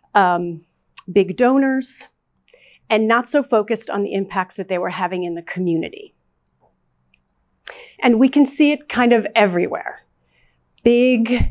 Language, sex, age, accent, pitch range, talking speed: English, female, 40-59, American, 185-255 Hz, 135 wpm